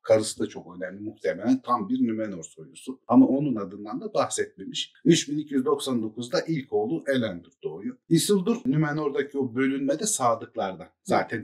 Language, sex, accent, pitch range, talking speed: Turkish, male, native, 110-165 Hz, 130 wpm